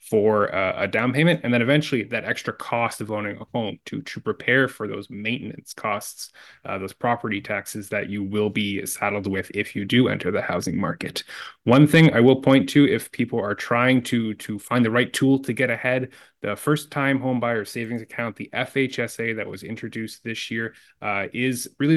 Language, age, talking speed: English, 20-39, 200 wpm